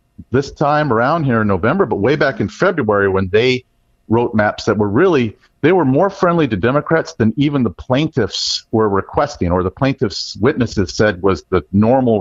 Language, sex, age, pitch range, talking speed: English, male, 40-59, 100-125 Hz, 185 wpm